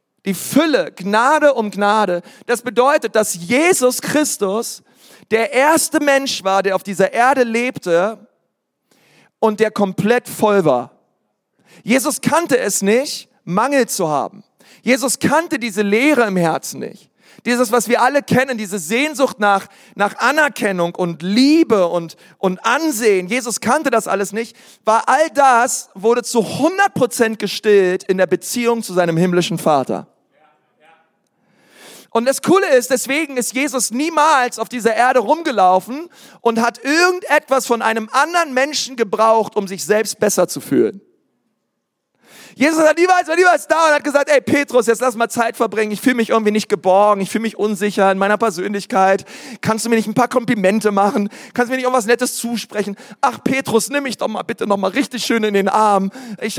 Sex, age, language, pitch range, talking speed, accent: male, 40-59, German, 205-265 Hz, 165 wpm, German